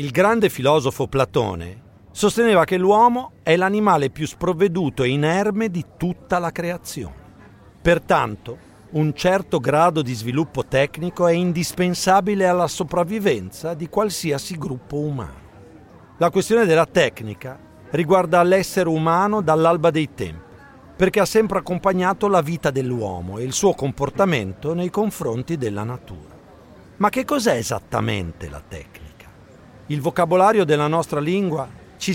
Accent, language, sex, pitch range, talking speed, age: native, Italian, male, 135-190 Hz, 130 wpm, 50-69